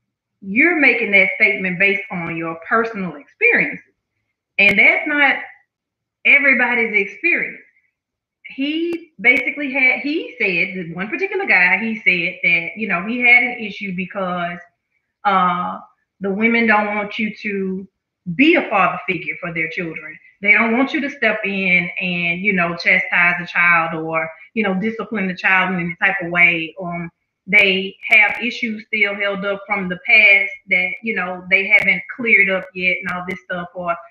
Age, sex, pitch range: 30-49, female, 180-235 Hz